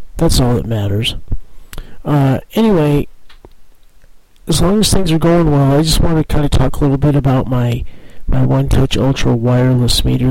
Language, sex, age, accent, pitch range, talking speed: English, male, 50-69, American, 115-140 Hz, 180 wpm